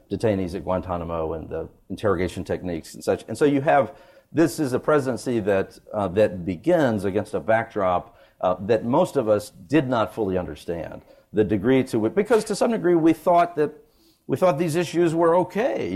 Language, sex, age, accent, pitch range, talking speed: English, male, 50-69, American, 100-135 Hz, 190 wpm